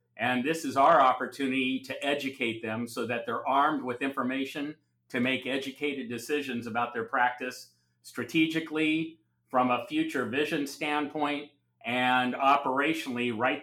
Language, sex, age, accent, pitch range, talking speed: English, male, 50-69, American, 120-150 Hz, 130 wpm